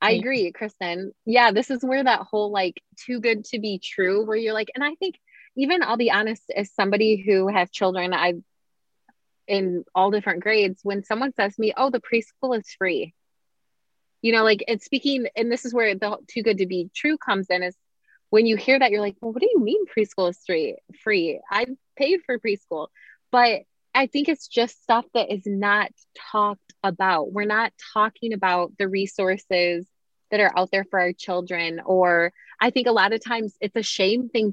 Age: 20-39